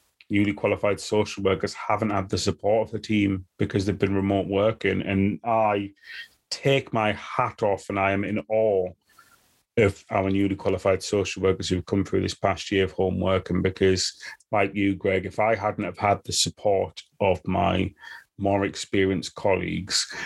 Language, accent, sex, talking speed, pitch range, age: English, British, male, 170 wpm, 95-105 Hz, 30-49